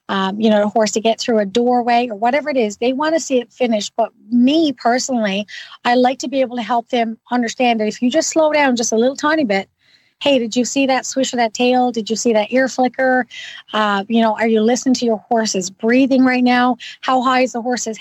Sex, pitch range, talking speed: female, 230-265 Hz, 250 wpm